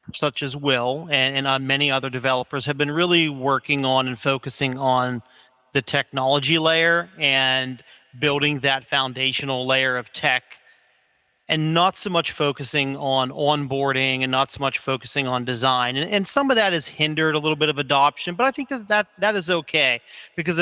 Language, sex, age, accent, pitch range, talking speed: English, male, 30-49, American, 135-155 Hz, 180 wpm